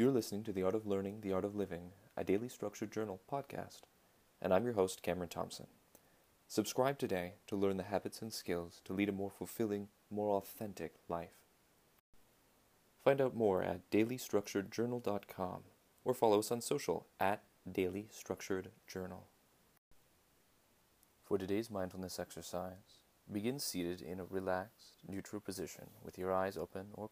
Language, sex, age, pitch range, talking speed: English, male, 30-49, 95-105 Hz, 150 wpm